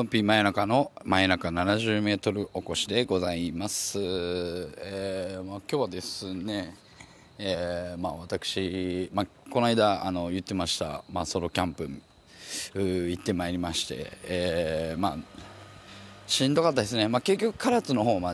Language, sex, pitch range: Japanese, male, 85-110 Hz